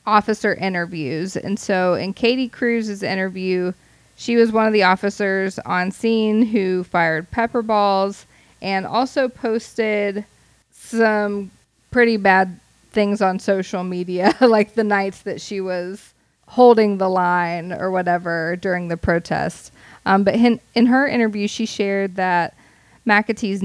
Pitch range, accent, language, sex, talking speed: 180-215 Hz, American, English, female, 135 wpm